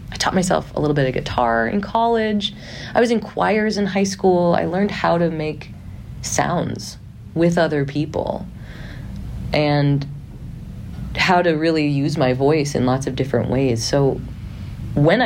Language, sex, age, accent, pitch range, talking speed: English, female, 30-49, American, 125-170 Hz, 155 wpm